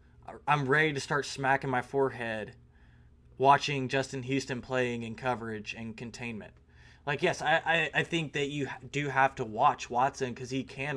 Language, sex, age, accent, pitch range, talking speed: English, male, 20-39, American, 115-160 Hz, 170 wpm